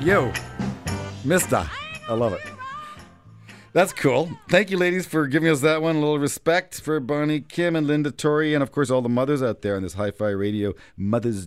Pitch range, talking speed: 100-150 Hz, 195 wpm